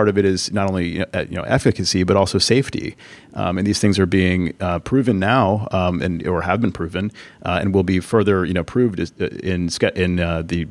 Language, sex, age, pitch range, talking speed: English, male, 30-49, 90-115 Hz, 220 wpm